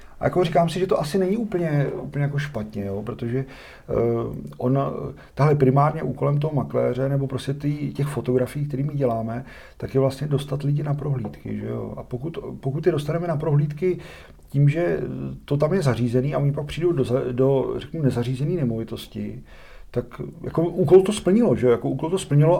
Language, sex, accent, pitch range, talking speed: Czech, male, native, 120-150 Hz, 175 wpm